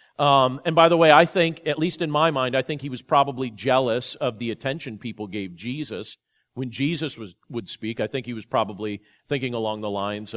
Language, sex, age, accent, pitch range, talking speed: English, male, 40-59, American, 135-185 Hz, 220 wpm